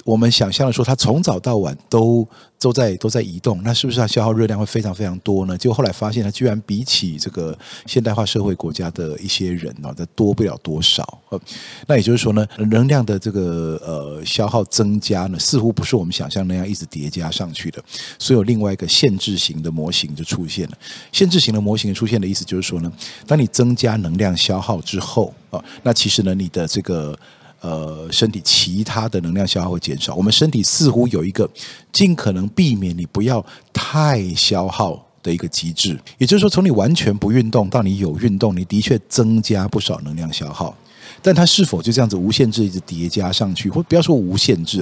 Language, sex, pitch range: Chinese, male, 90-120 Hz